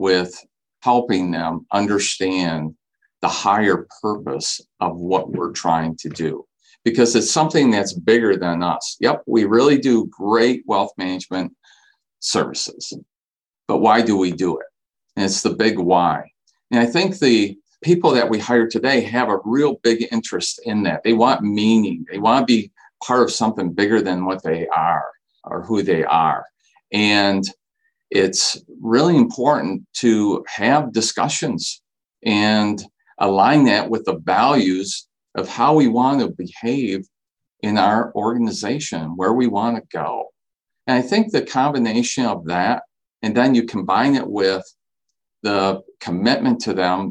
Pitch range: 95-120 Hz